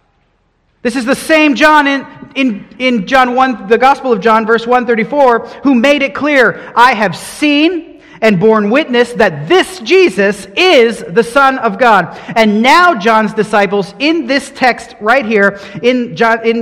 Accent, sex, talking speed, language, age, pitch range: American, male, 165 wpm, English, 40-59, 195-265 Hz